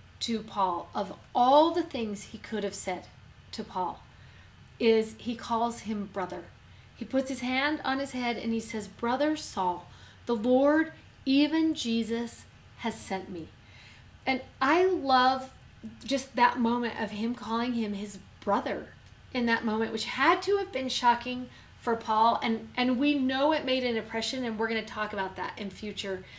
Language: English